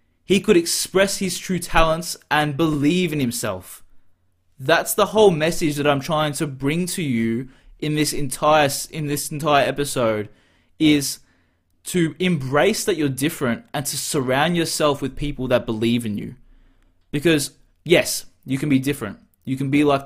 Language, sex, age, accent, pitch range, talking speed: English, male, 20-39, Australian, 105-155 Hz, 160 wpm